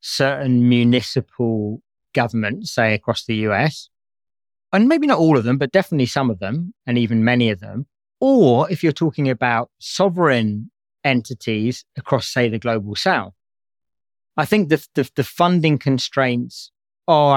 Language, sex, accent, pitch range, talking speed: English, male, British, 115-145 Hz, 150 wpm